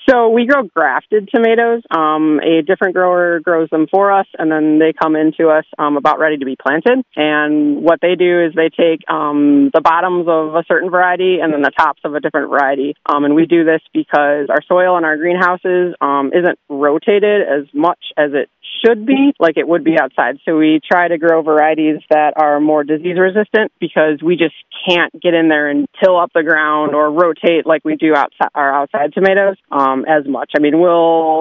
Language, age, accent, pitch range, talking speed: English, 20-39, American, 155-190 Hz, 210 wpm